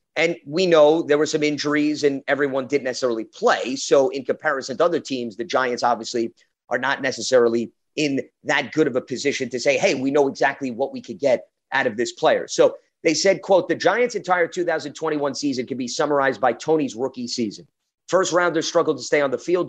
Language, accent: English, American